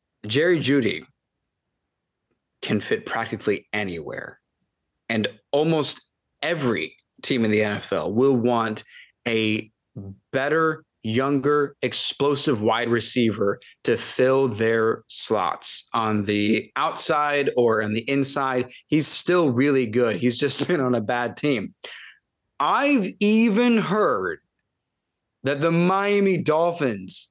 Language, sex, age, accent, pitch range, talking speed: English, male, 20-39, American, 120-165 Hz, 110 wpm